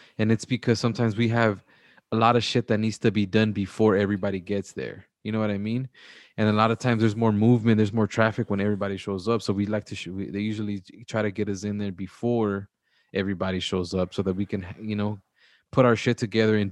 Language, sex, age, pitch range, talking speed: English, male, 20-39, 100-115 Hz, 235 wpm